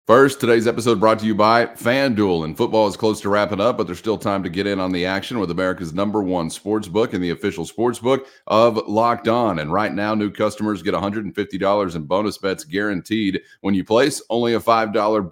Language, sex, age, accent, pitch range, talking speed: English, male, 30-49, American, 95-115 Hz, 220 wpm